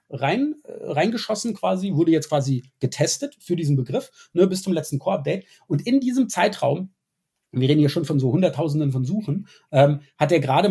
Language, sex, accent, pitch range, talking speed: German, male, German, 130-180 Hz, 170 wpm